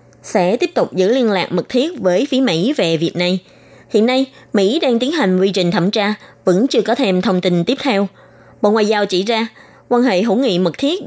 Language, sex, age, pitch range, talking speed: Vietnamese, female, 20-39, 175-240 Hz, 235 wpm